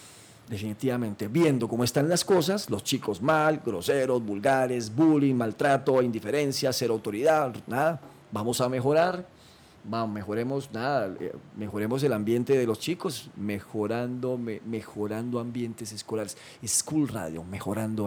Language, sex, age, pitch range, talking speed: Spanish, male, 40-59, 115-160 Hz, 125 wpm